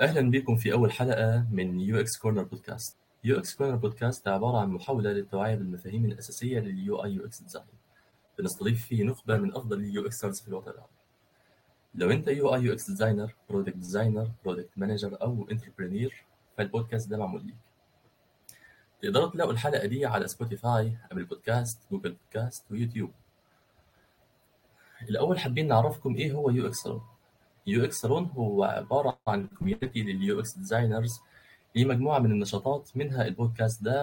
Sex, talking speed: male, 145 wpm